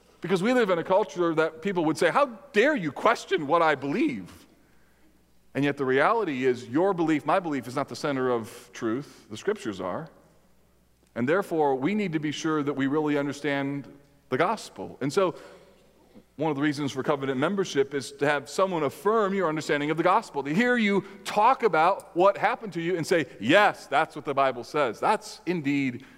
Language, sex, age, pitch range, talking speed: English, male, 40-59, 150-200 Hz, 195 wpm